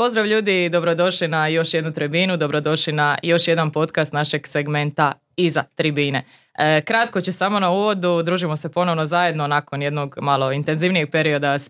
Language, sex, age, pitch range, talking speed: Croatian, female, 20-39, 155-185 Hz, 160 wpm